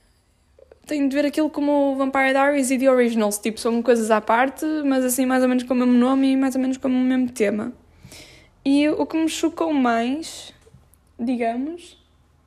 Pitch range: 235-295 Hz